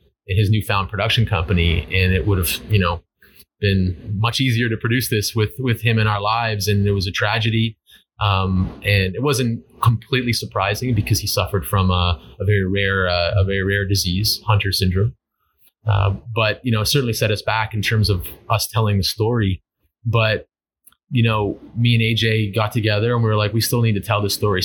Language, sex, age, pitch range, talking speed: English, male, 30-49, 100-115 Hz, 205 wpm